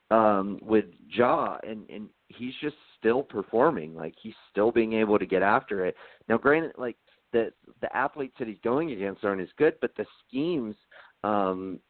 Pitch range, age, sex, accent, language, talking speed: 100-135 Hz, 40-59, male, American, English, 175 wpm